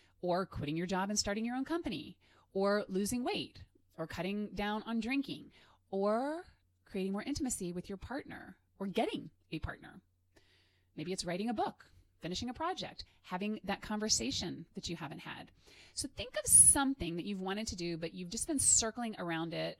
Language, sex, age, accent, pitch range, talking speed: English, female, 30-49, American, 160-215 Hz, 180 wpm